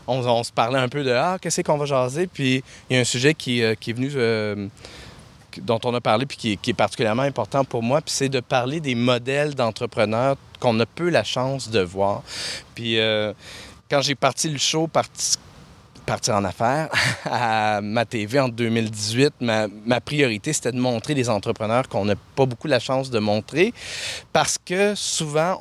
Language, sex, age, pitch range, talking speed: French, male, 30-49, 115-145 Hz, 210 wpm